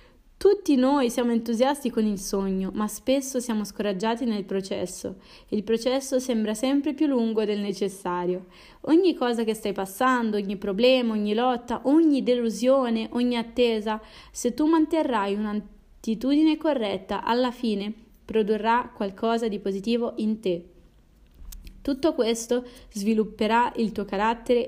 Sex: female